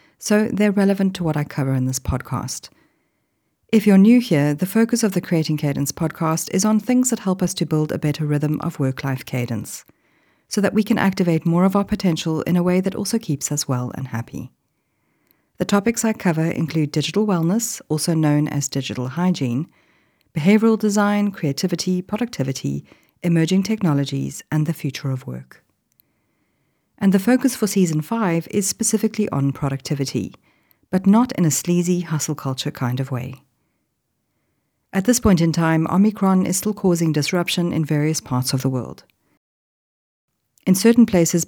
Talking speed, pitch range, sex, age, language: 170 wpm, 145-195 Hz, female, 40-59, English